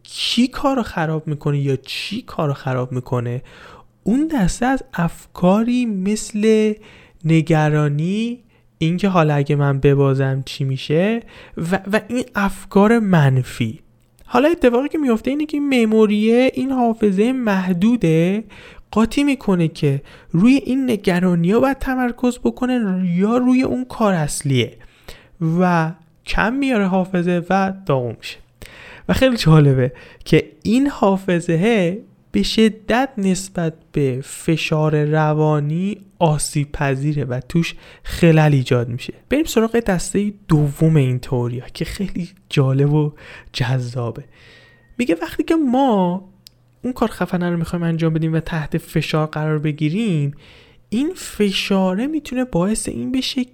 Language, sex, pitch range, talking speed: Persian, male, 150-230 Hz, 120 wpm